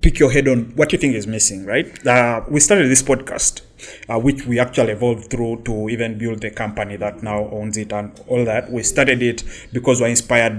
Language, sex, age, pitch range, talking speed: English, male, 30-49, 110-130 Hz, 220 wpm